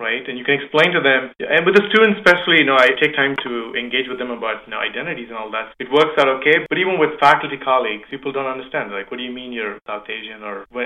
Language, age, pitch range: English, 30-49, 115-145 Hz